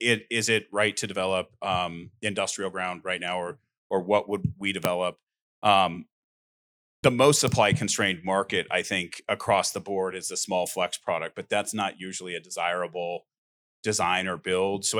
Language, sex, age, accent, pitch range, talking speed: English, male, 30-49, American, 90-105 Hz, 170 wpm